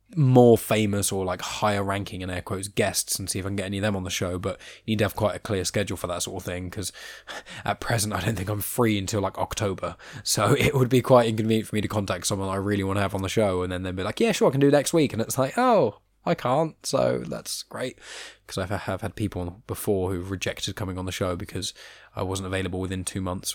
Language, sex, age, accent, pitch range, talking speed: English, male, 20-39, British, 95-115 Hz, 275 wpm